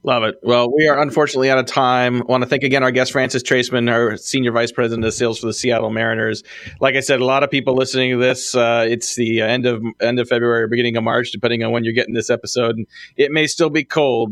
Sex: male